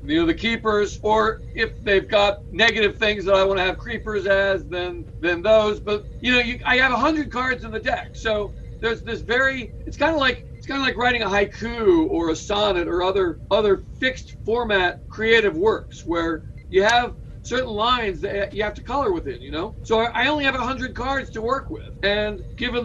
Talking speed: 210 wpm